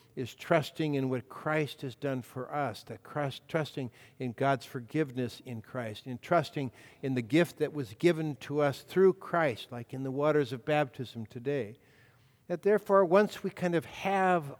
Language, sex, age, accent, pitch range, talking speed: English, male, 60-79, American, 125-150 Hz, 175 wpm